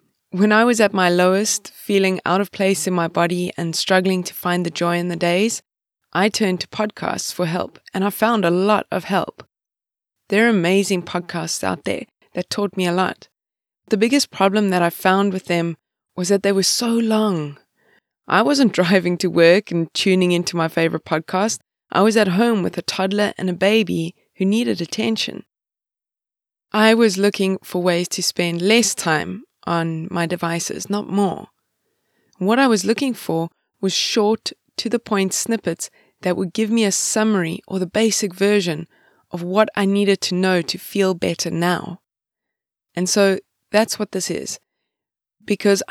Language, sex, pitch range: English, female, 175-210 Hz